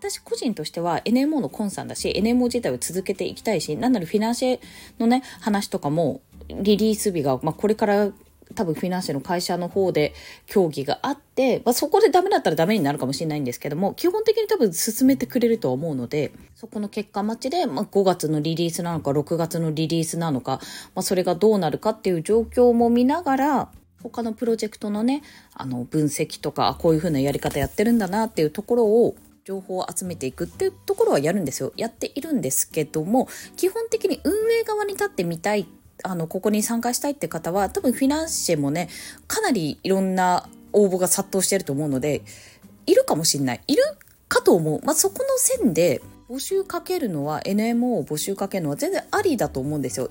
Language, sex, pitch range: Japanese, female, 155-250 Hz